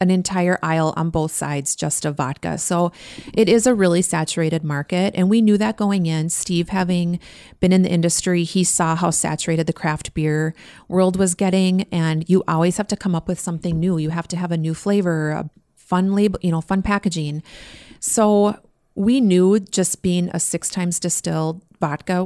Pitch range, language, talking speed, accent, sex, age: 160-185 Hz, English, 195 wpm, American, female, 30-49